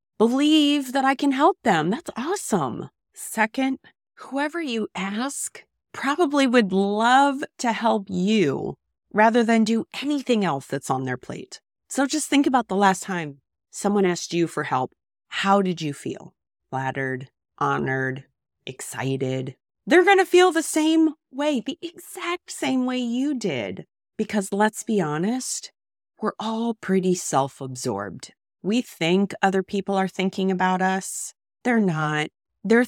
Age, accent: 30-49, American